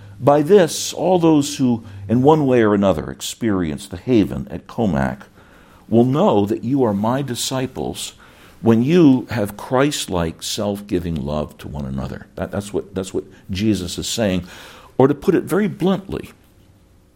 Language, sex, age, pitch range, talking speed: English, male, 60-79, 85-130 Hz, 150 wpm